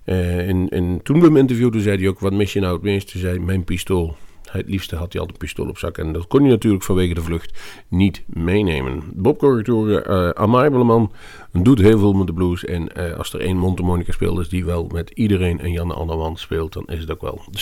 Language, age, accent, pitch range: Dutch, 40-59, Dutch, 85-110 Hz